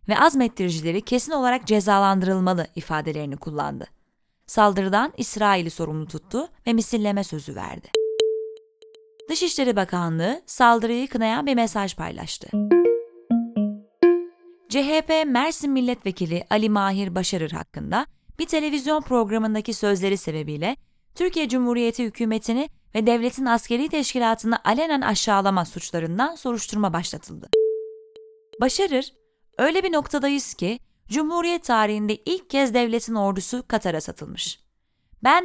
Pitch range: 180-275 Hz